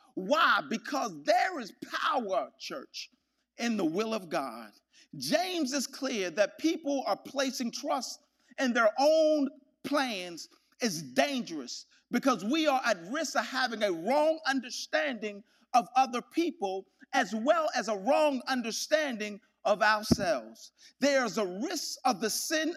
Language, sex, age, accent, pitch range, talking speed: English, male, 50-69, American, 245-315 Hz, 135 wpm